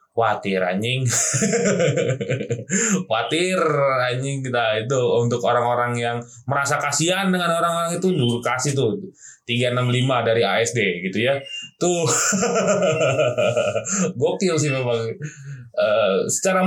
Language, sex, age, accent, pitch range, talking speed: Indonesian, male, 20-39, native, 120-165 Hz, 95 wpm